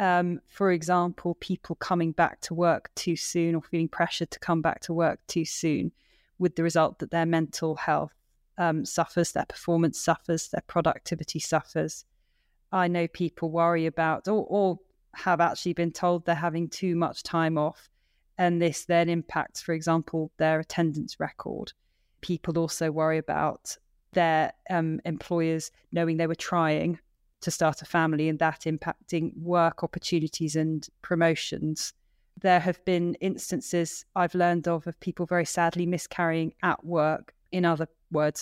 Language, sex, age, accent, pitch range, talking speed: English, female, 20-39, British, 160-175 Hz, 155 wpm